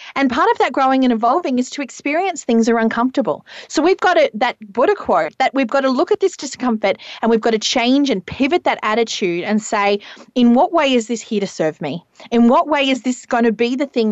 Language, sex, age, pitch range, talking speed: English, female, 30-49, 220-300 Hz, 245 wpm